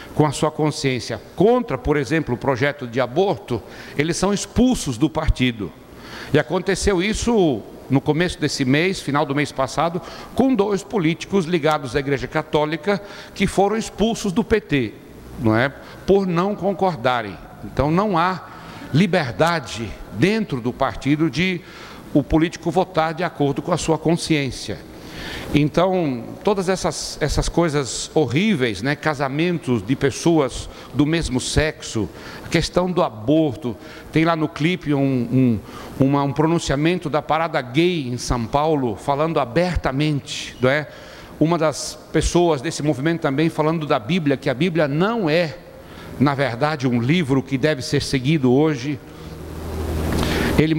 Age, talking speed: 60-79, 135 wpm